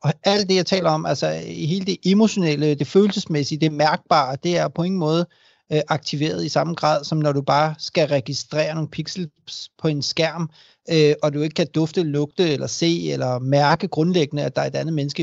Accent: native